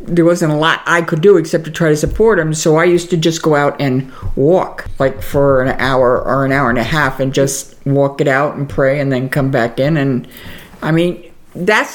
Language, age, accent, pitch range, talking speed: English, 60-79, American, 155-205 Hz, 240 wpm